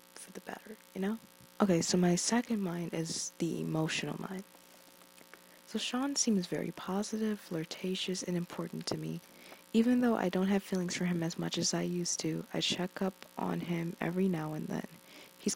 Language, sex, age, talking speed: English, female, 20-39, 185 wpm